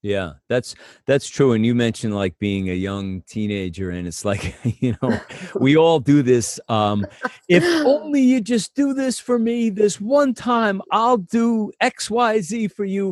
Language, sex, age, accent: English, male, 40-59, American